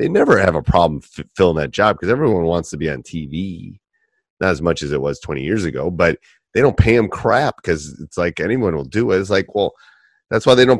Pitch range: 80-105 Hz